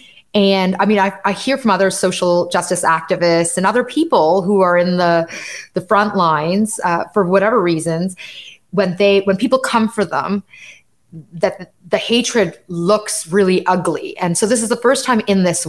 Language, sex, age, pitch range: English, female, 20-39, 175-215 Hz